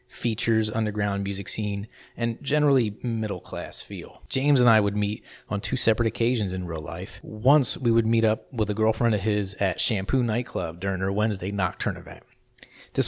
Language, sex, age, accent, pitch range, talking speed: English, male, 30-49, American, 100-120 Hz, 180 wpm